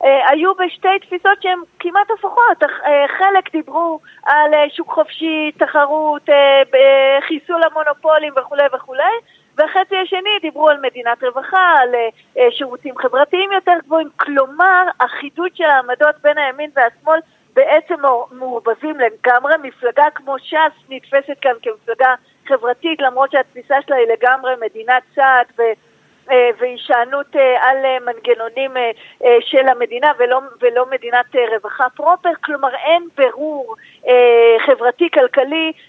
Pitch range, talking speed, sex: 255-320 Hz, 110 wpm, female